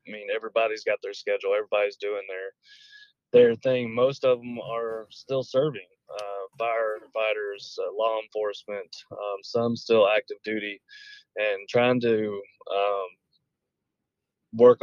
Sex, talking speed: male, 130 wpm